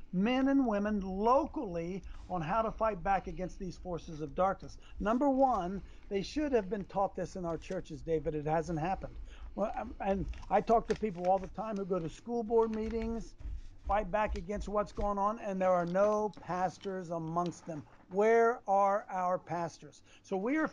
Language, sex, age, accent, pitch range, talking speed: English, male, 60-79, American, 180-240 Hz, 185 wpm